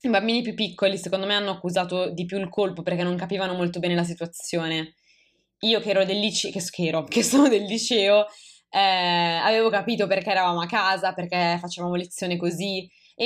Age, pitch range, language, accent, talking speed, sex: 20-39, 175-205 Hz, Italian, native, 185 wpm, female